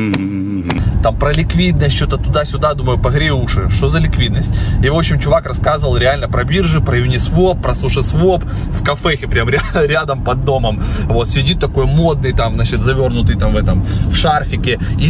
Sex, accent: male, native